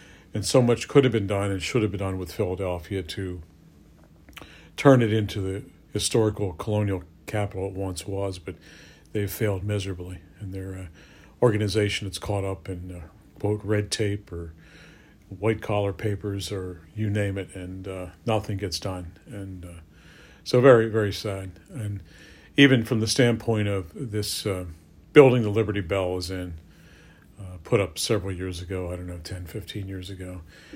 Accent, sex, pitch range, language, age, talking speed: American, male, 90-105 Hz, English, 50-69, 165 wpm